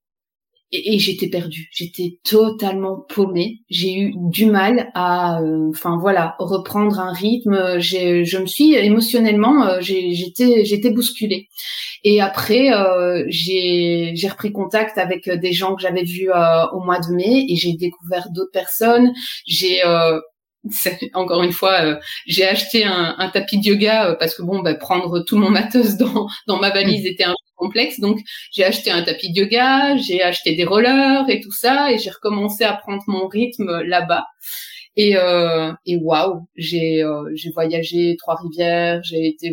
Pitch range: 175-220 Hz